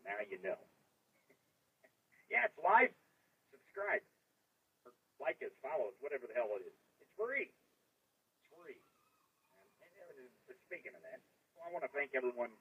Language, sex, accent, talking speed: English, male, American, 155 wpm